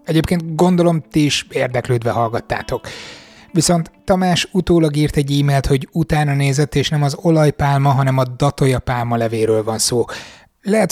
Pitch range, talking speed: 120-150 Hz, 145 wpm